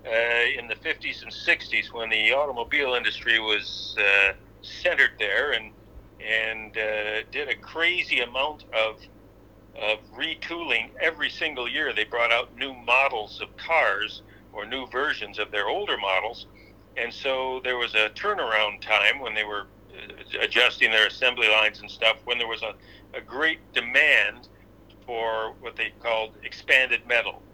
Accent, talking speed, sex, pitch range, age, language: American, 155 wpm, male, 105-120 Hz, 50-69, English